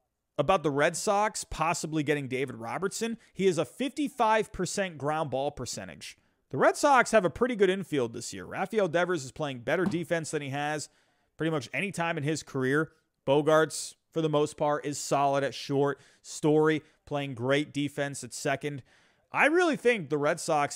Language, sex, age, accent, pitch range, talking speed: English, male, 30-49, American, 135-190 Hz, 180 wpm